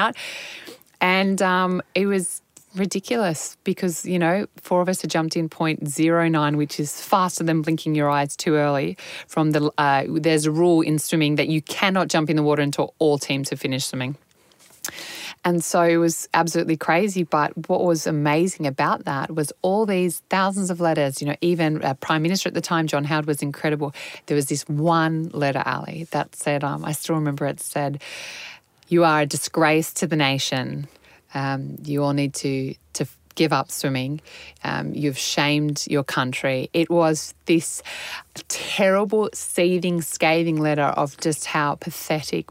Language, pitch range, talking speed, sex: English, 150-175 Hz, 175 wpm, female